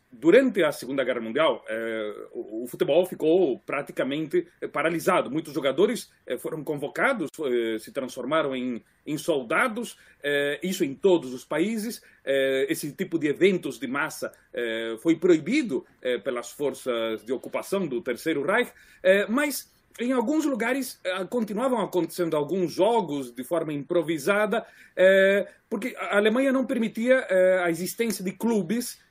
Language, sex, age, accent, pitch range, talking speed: Portuguese, male, 40-59, Brazilian, 155-215 Hz, 145 wpm